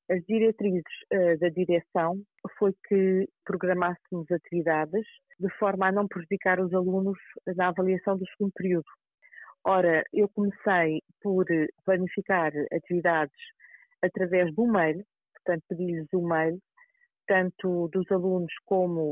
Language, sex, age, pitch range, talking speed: Portuguese, female, 40-59, 170-205 Hz, 120 wpm